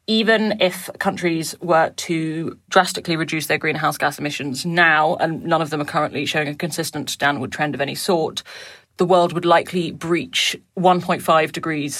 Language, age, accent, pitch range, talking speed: English, 30-49, British, 150-175 Hz, 165 wpm